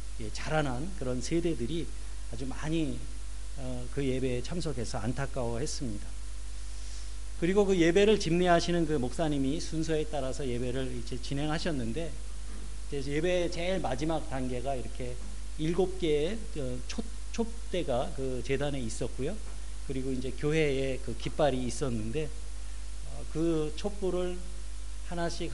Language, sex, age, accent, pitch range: Korean, male, 40-59, native, 110-155 Hz